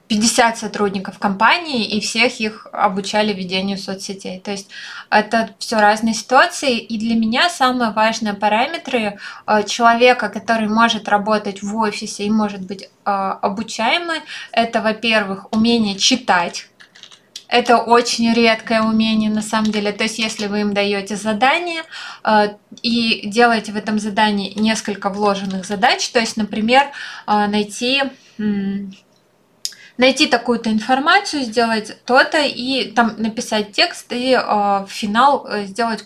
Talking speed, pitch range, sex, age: 120 wpm, 210-245 Hz, female, 20-39